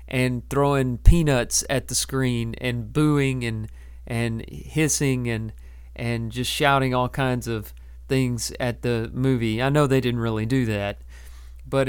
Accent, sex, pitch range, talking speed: American, male, 100-140 Hz, 150 wpm